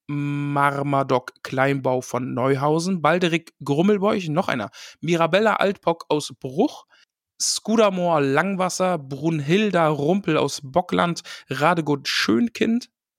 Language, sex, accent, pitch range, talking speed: German, male, German, 145-190 Hz, 90 wpm